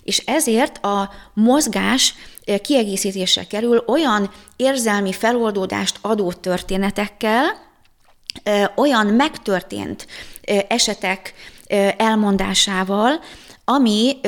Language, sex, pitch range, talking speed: Hungarian, female, 185-220 Hz, 65 wpm